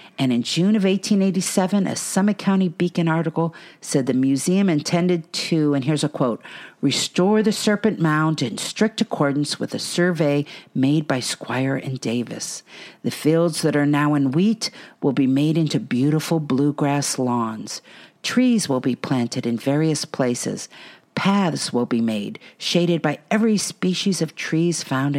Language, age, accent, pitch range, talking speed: English, 50-69, American, 130-180 Hz, 155 wpm